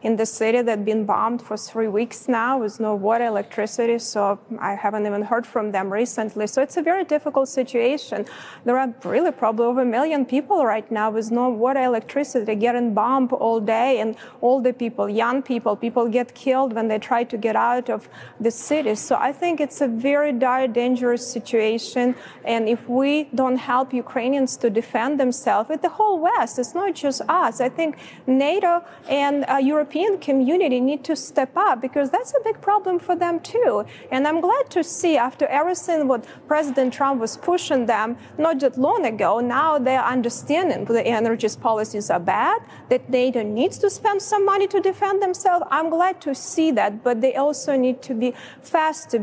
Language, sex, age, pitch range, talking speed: English, female, 30-49, 230-300 Hz, 190 wpm